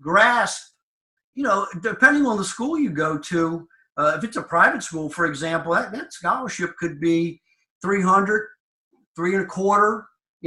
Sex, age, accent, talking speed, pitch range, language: male, 50-69, American, 165 wpm, 165-205 Hz, English